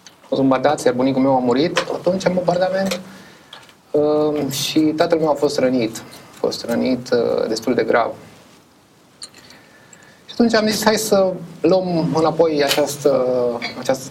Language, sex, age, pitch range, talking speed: Romanian, male, 30-49, 125-170 Hz, 140 wpm